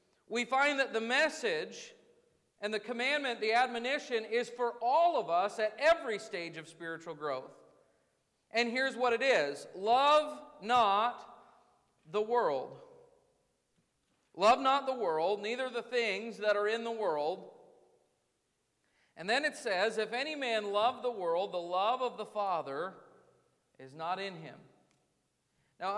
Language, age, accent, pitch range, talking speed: English, 50-69, American, 200-255 Hz, 145 wpm